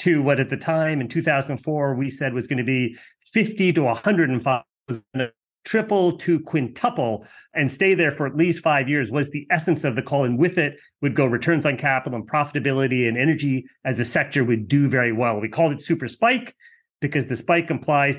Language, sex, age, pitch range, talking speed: English, male, 30-49, 125-165 Hz, 205 wpm